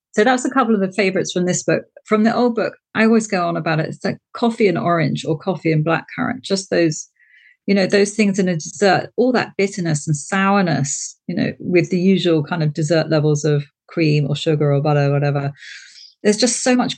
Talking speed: 225 wpm